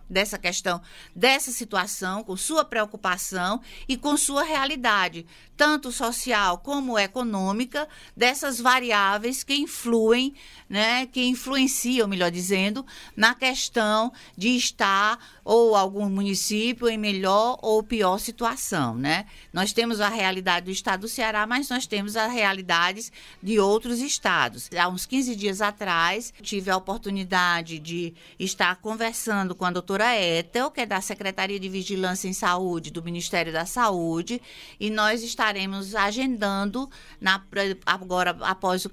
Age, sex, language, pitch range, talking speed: 50-69, female, Portuguese, 190-240 Hz, 135 wpm